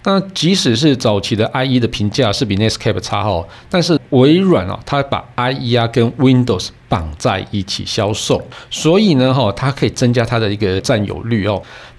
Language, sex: Chinese, male